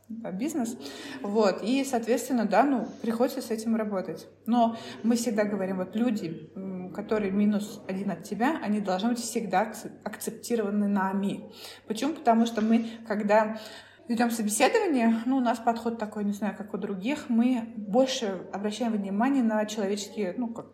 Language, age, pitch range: Russian, 20-39, 210-240 Hz